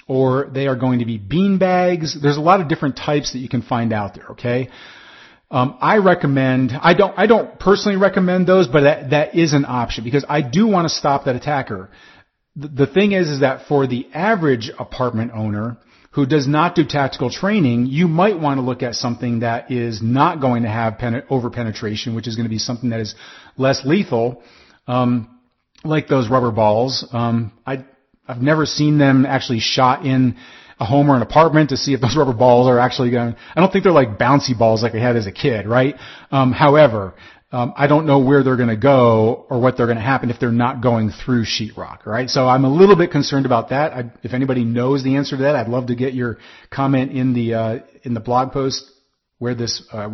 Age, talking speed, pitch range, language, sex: 40-59, 220 wpm, 120-145 Hz, English, male